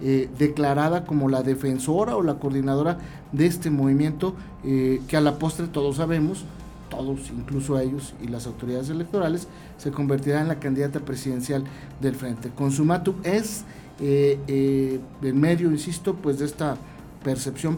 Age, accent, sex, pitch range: 50-69, Mexican, male, 135-170 Hz